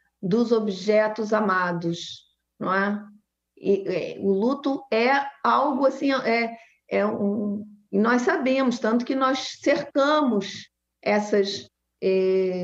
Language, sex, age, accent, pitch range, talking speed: Portuguese, female, 40-59, Brazilian, 205-255 Hz, 115 wpm